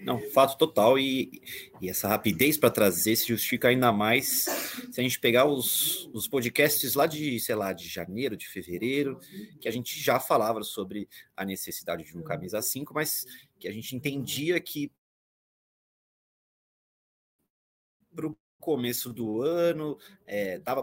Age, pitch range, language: 30-49, 100-145 Hz, Portuguese